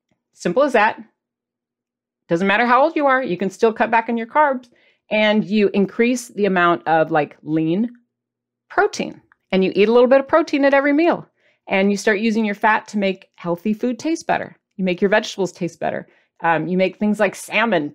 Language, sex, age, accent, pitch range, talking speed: English, female, 40-59, American, 180-240 Hz, 205 wpm